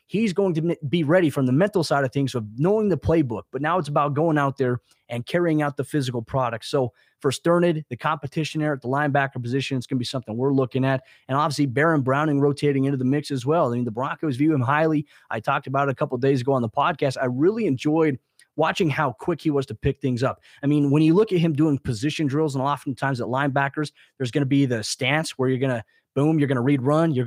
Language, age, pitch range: English, 30-49, 135-160 Hz